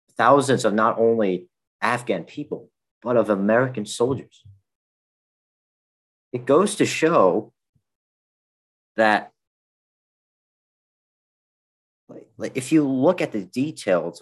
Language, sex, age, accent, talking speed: English, male, 40-59, American, 90 wpm